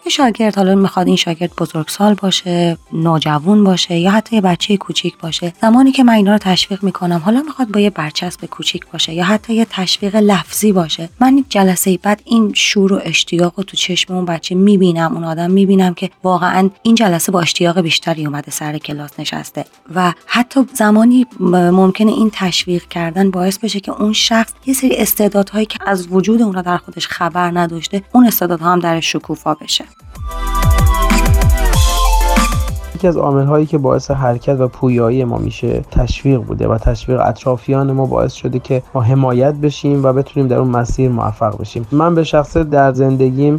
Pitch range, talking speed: 130-185 Hz, 170 wpm